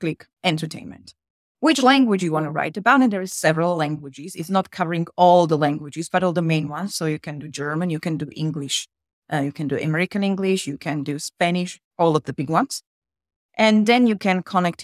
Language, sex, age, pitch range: English, female, 30-49, 155-195 Hz